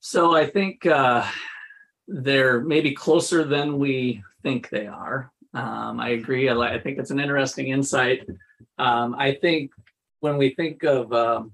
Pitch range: 120-150 Hz